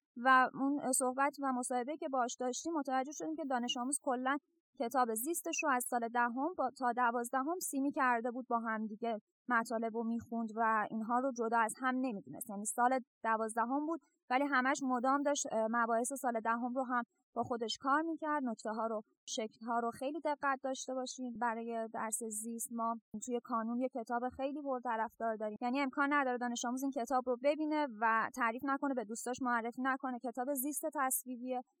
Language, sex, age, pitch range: Persian, female, 20-39, 230-275 Hz